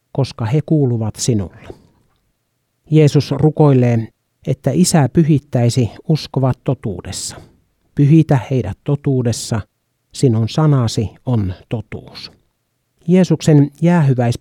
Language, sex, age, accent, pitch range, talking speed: Finnish, male, 60-79, native, 120-150 Hz, 80 wpm